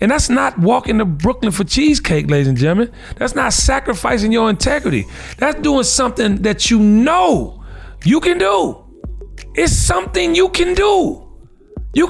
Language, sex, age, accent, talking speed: English, male, 40-59, American, 155 wpm